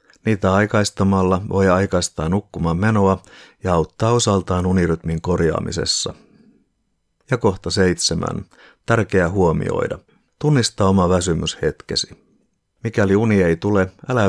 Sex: male